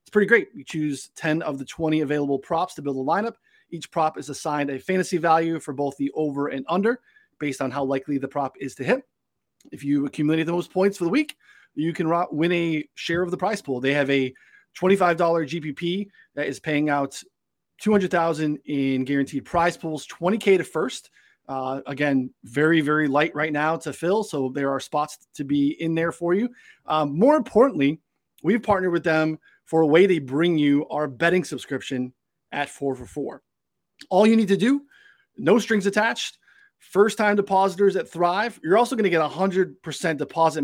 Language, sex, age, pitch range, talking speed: English, male, 30-49, 145-185 Hz, 190 wpm